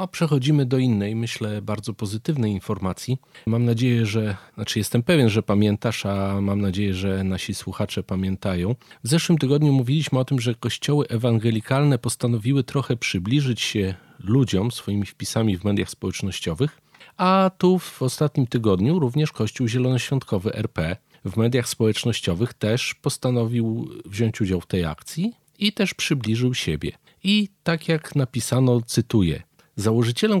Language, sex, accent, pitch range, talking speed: Polish, male, native, 100-145 Hz, 140 wpm